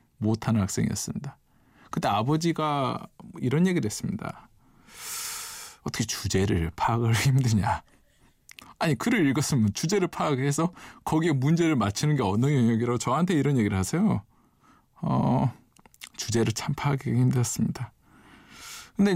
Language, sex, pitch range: Korean, male, 110-155 Hz